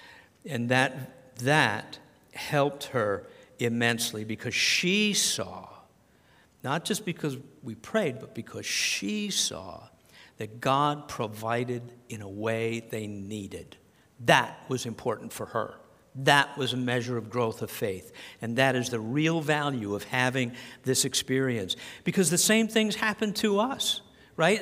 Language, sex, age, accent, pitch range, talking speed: English, male, 50-69, American, 125-200 Hz, 140 wpm